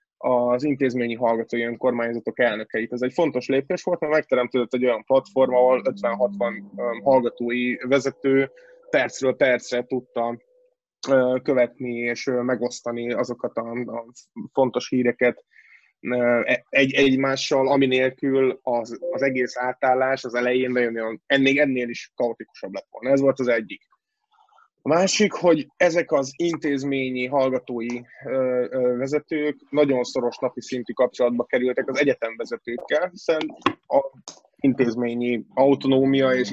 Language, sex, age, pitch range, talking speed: Hungarian, male, 20-39, 120-150 Hz, 115 wpm